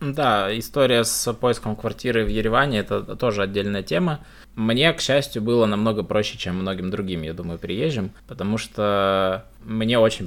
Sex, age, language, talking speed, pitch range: male, 20-39, Russian, 160 wpm, 105-120 Hz